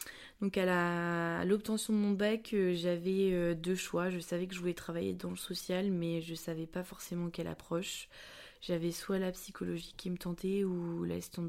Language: French